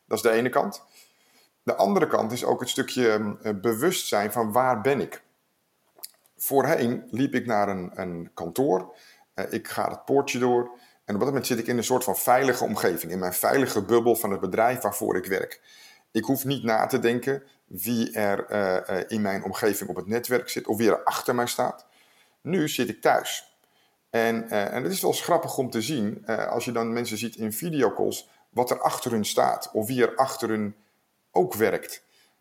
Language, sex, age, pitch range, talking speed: Dutch, male, 50-69, 105-130 Hz, 195 wpm